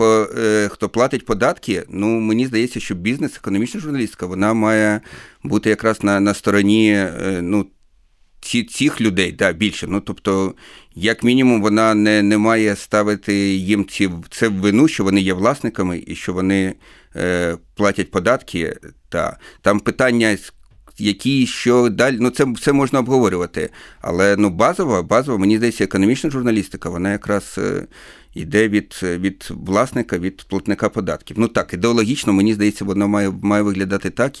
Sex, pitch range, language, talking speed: male, 95-110 Hz, Ukrainian, 150 wpm